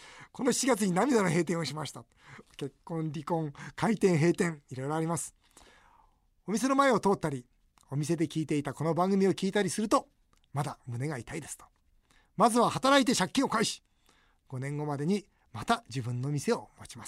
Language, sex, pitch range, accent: Japanese, male, 145-235 Hz, native